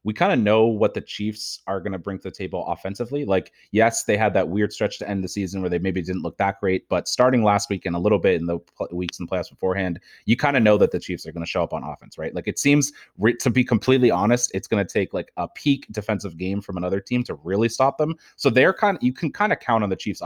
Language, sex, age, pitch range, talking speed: English, male, 30-49, 95-120 Hz, 285 wpm